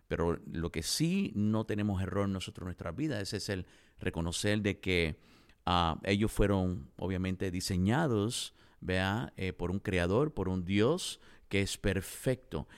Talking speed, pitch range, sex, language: 155 wpm, 100-140 Hz, male, English